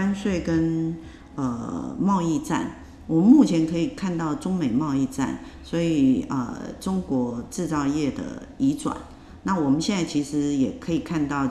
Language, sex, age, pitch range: Chinese, female, 50-69, 135-200 Hz